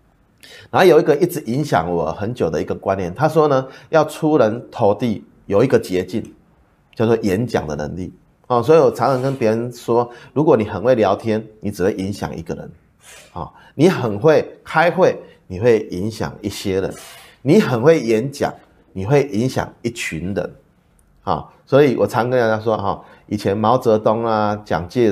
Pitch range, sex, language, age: 95-130 Hz, male, Chinese, 30-49